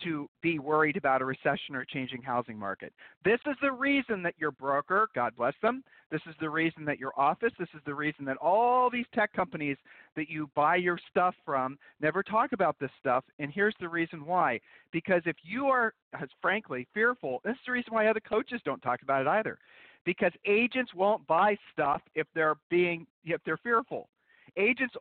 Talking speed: 200 wpm